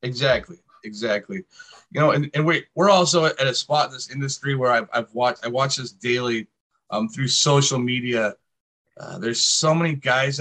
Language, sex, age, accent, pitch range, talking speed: English, male, 30-49, American, 125-160 Hz, 185 wpm